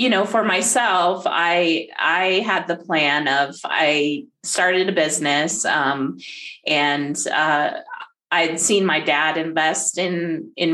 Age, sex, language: 30-49, female, English